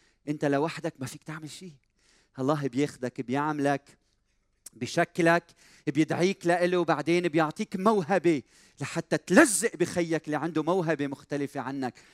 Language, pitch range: Arabic, 130-165 Hz